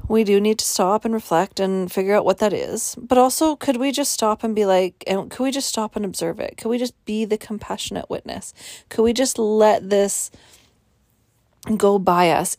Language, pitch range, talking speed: English, 175-215 Hz, 215 wpm